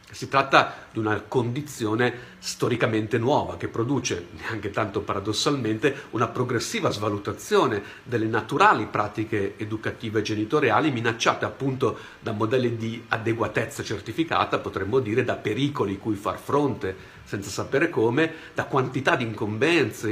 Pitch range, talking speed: 105-135 Hz, 120 wpm